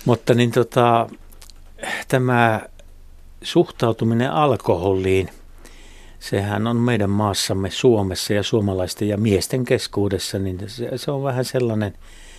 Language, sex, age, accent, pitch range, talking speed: Finnish, male, 60-79, native, 95-115 Hz, 95 wpm